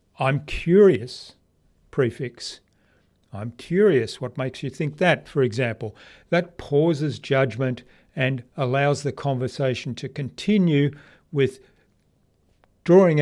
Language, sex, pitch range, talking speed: English, male, 120-155 Hz, 105 wpm